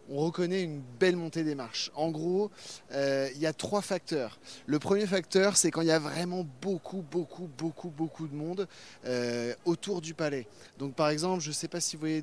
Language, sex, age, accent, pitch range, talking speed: French, male, 30-49, French, 140-175 Hz, 210 wpm